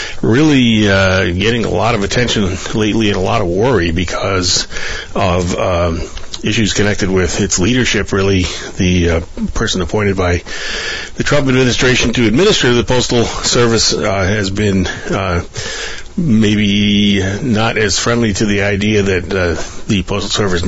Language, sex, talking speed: English, male, 150 wpm